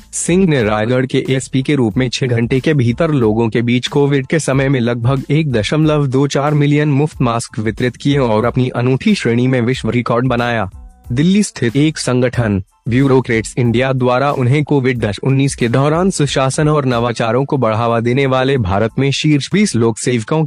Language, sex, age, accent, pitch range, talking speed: Hindi, male, 20-39, native, 115-145 Hz, 180 wpm